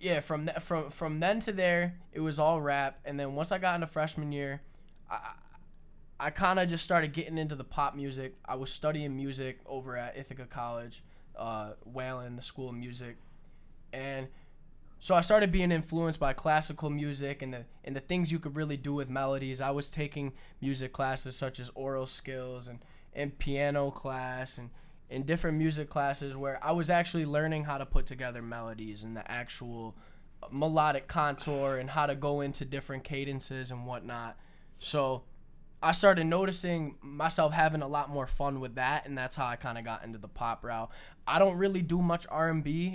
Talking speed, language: 185 wpm, English